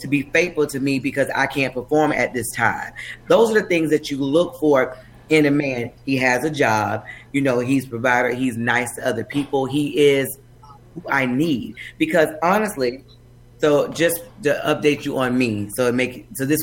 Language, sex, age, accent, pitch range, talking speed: English, female, 30-49, American, 120-160 Hz, 195 wpm